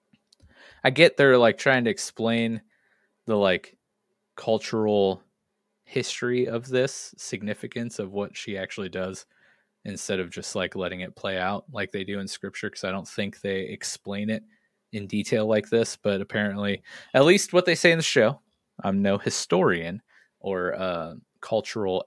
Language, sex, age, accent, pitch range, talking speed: English, male, 20-39, American, 100-130 Hz, 165 wpm